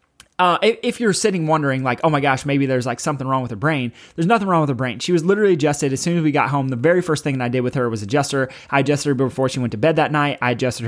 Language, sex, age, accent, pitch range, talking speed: English, male, 20-39, American, 130-170 Hz, 315 wpm